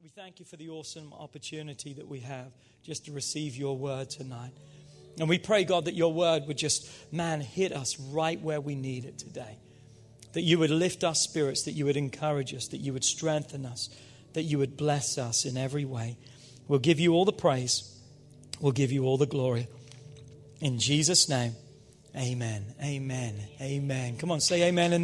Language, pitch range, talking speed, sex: English, 135-165 Hz, 195 wpm, male